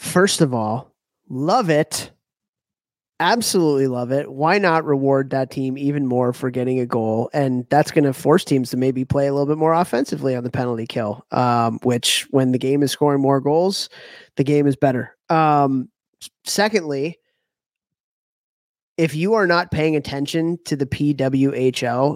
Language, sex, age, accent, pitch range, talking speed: English, male, 30-49, American, 125-145 Hz, 165 wpm